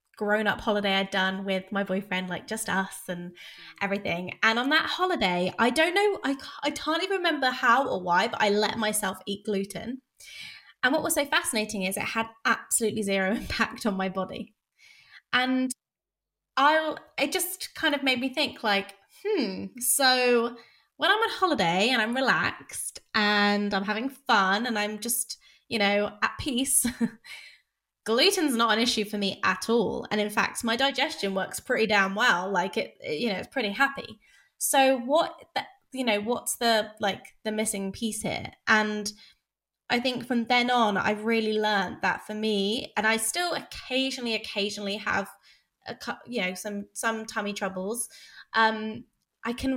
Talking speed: 170 wpm